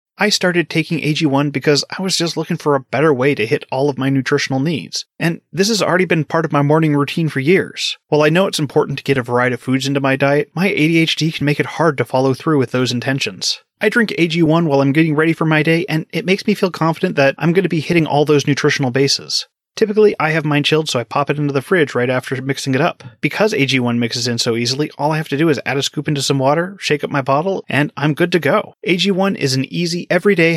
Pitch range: 135-165 Hz